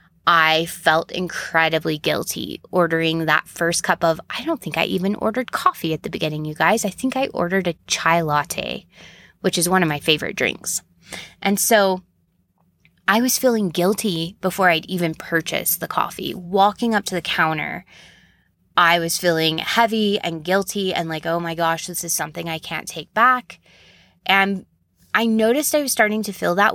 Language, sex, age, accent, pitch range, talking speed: English, female, 20-39, American, 165-195 Hz, 175 wpm